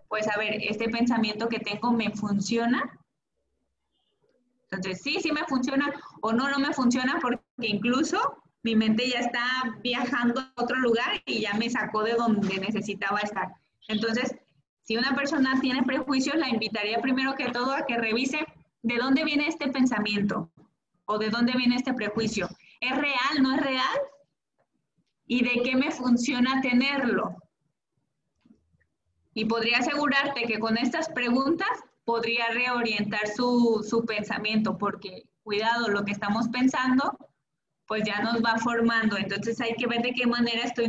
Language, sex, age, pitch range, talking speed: Spanish, female, 20-39, 215-255 Hz, 155 wpm